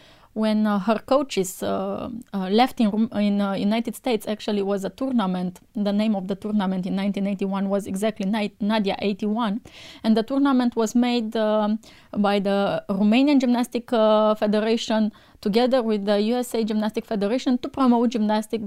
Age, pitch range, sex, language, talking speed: 20-39, 200-240 Hz, female, English, 160 wpm